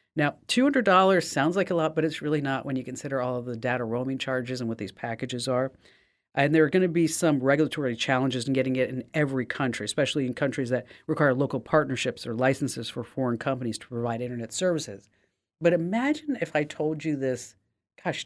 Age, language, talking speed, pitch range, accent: 40-59, English, 205 wpm, 125-170 Hz, American